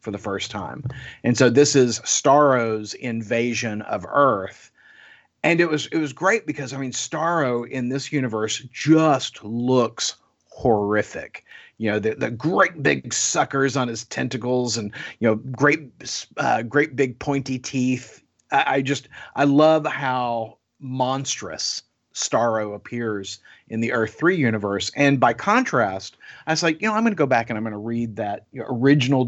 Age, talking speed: 40-59, 165 wpm